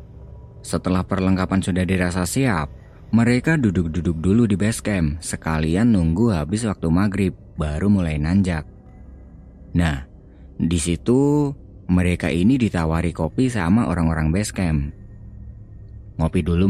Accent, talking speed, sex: native, 115 wpm, male